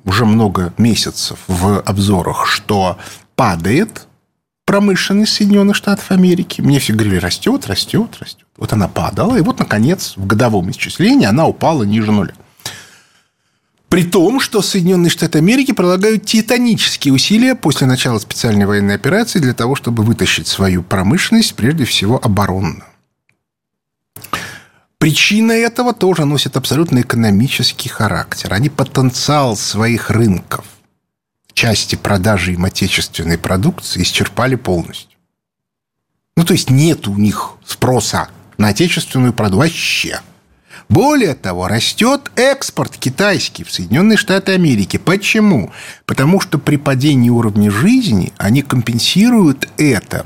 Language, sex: Russian, male